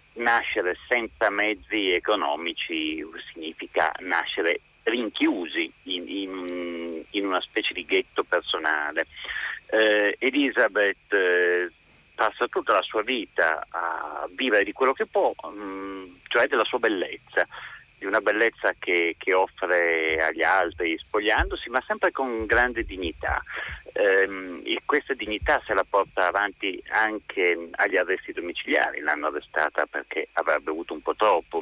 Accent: native